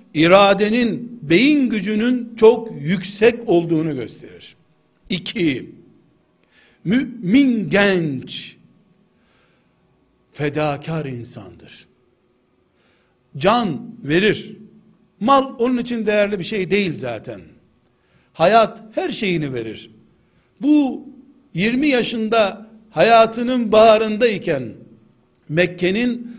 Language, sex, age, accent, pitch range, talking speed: Turkish, male, 60-79, native, 180-235 Hz, 75 wpm